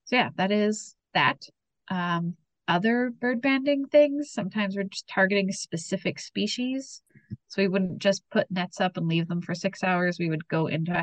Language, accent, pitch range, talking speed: English, American, 170-205 Hz, 185 wpm